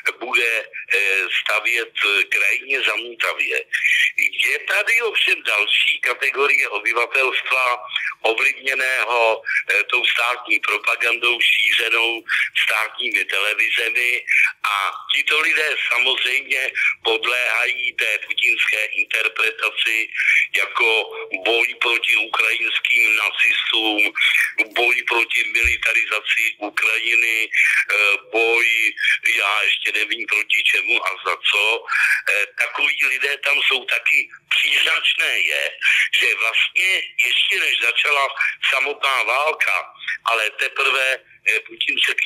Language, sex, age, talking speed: Slovak, male, 50-69, 90 wpm